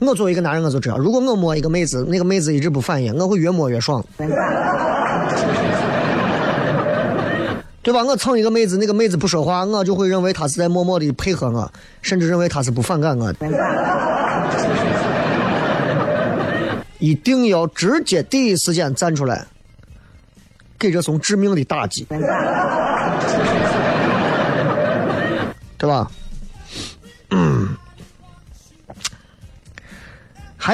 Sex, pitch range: male, 125-180 Hz